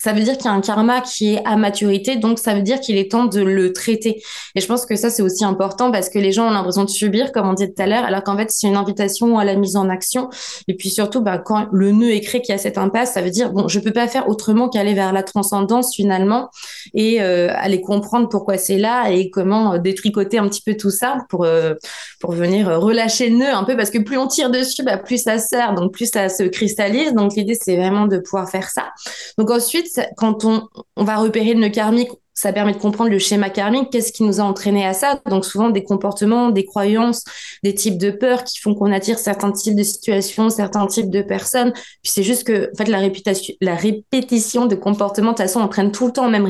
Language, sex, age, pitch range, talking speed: French, female, 20-39, 195-230 Hz, 250 wpm